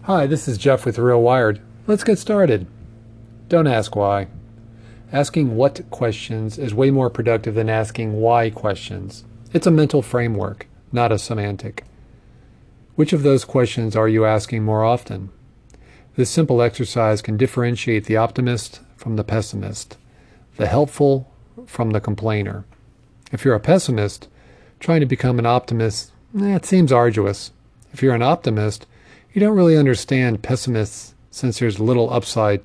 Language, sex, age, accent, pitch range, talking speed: English, male, 40-59, American, 110-130 Hz, 150 wpm